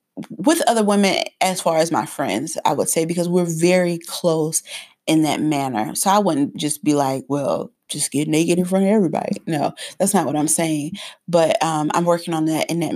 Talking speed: 215 wpm